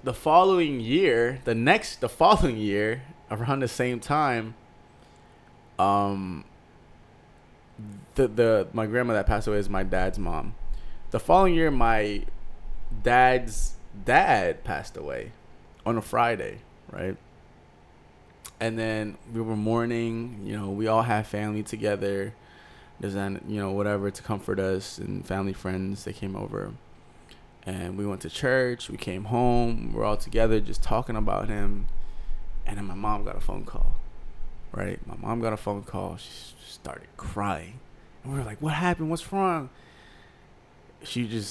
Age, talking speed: 20-39, 150 wpm